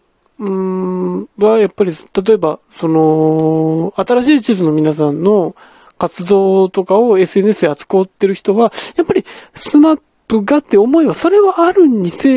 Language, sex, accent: Japanese, male, native